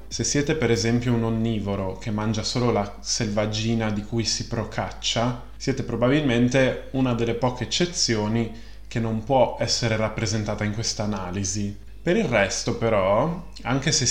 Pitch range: 105-125 Hz